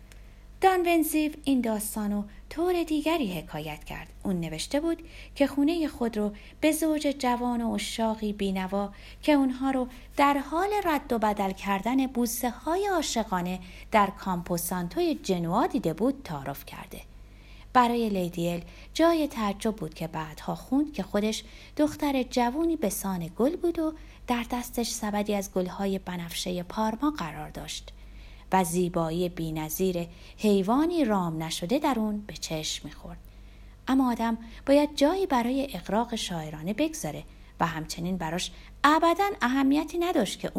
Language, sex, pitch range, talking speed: Persian, female, 185-285 Hz, 140 wpm